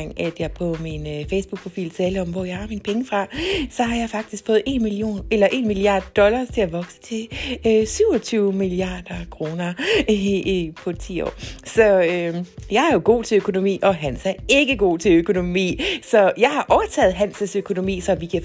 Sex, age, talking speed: female, 30-49, 195 wpm